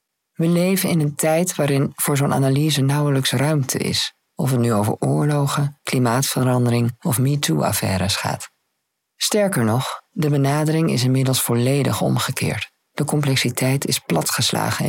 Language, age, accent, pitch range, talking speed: Dutch, 50-69, Dutch, 120-160 Hz, 135 wpm